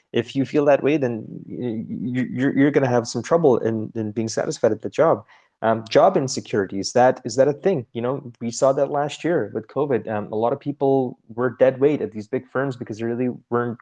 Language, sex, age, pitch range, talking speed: English, male, 20-39, 110-135 Hz, 220 wpm